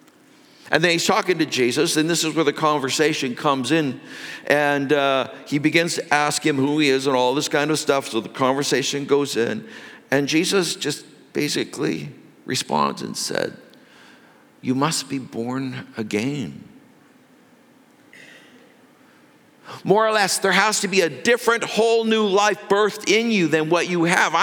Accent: American